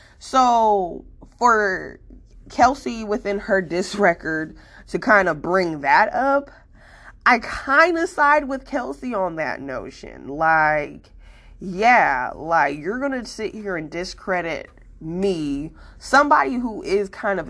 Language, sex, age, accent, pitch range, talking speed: English, female, 20-39, American, 160-225 Hz, 130 wpm